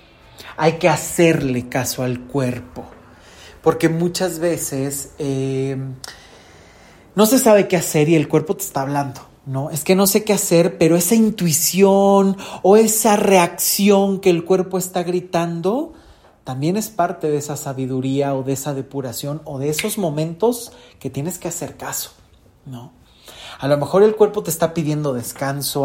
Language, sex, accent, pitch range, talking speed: Spanish, male, Mexican, 135-185 Hz, 160 wpm